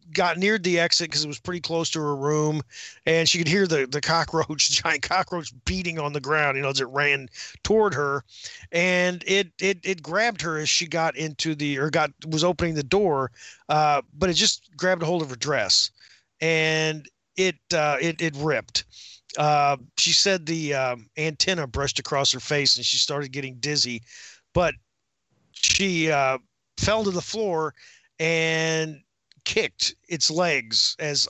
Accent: American